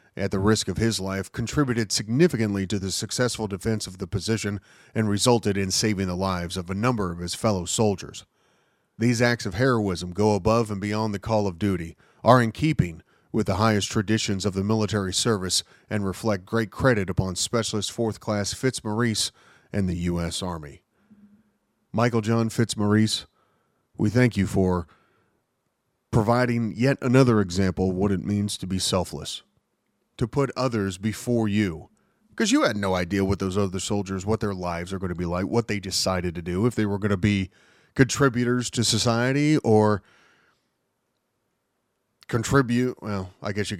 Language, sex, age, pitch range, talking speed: English, male, 40-59, 95-120 Hz, 170 wpm